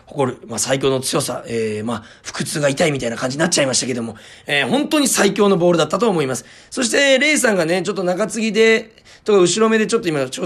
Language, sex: Japanese, male